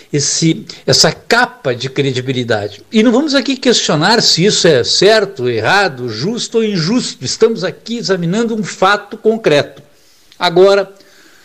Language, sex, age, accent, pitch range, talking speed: Portuguese, male, 60-79, Brazilian, 155-225 Hz, 125 wpm